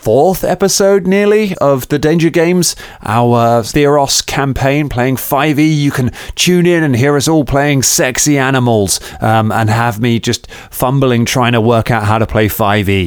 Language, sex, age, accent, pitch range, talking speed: English, male, 30-49, British, 115-155 Hz, 175 wpm